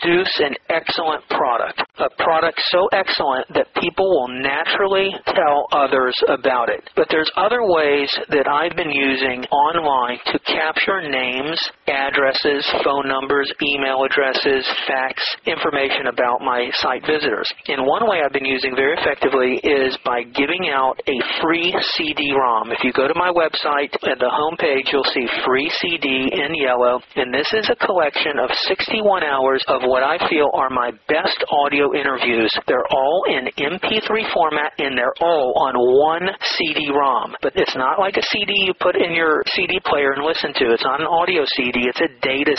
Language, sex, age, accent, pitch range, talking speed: English, male, 40-59, American, 135-180 Hz, 170 wpm